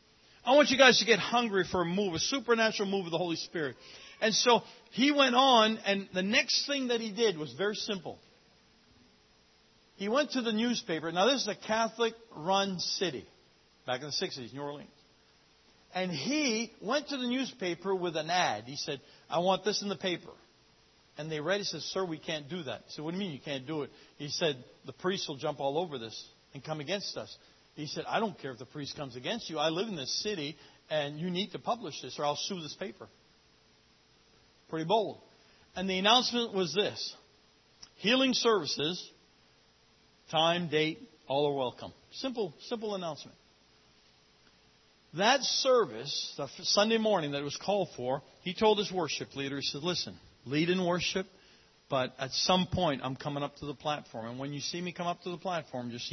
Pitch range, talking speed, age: 145-210 Hz, 200 wpm, 50-69